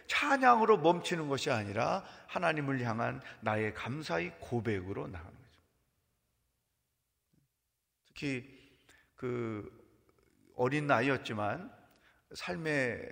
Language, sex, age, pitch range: Korean, male, 40-59, 115-155 Hz